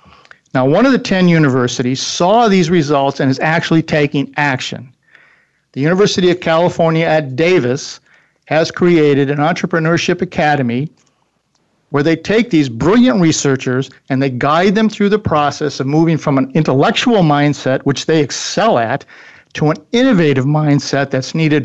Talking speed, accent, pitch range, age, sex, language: 150 wpm, American, 140-165 Hz, 50-69, male, English